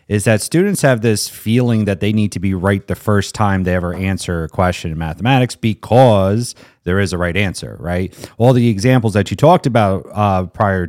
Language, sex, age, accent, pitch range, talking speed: English, male, 30-49, American, 95-120 Hz, 210 wpm